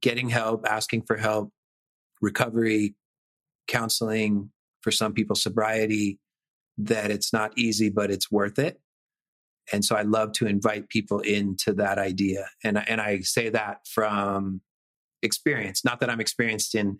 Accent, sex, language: American, male, English